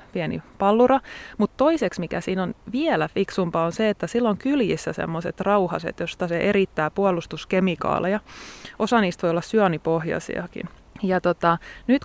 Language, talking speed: Finnish, 145 wpm